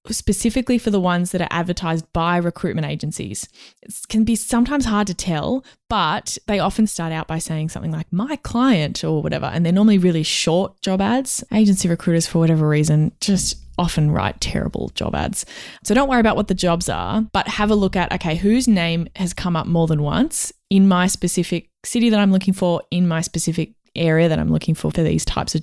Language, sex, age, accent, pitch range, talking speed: English, female, 20-39, Australian, 165-205 Hz, 210 wpm